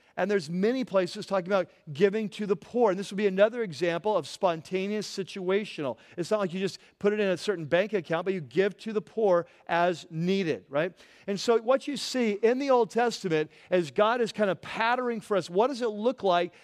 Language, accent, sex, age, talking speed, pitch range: English, American, male, 40-59, 225 wpm, 185-225 Hz